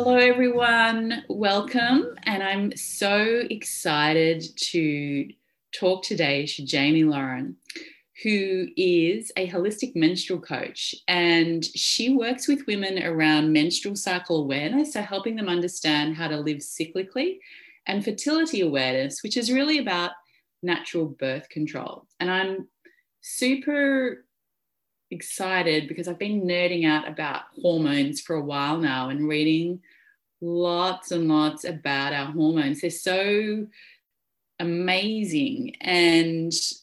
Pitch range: 160-215 Hz